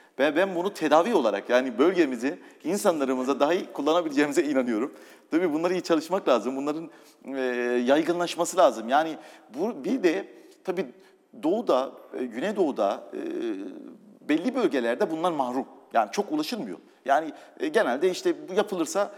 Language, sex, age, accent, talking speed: Turkish, male, 40-59, native, 120 wpm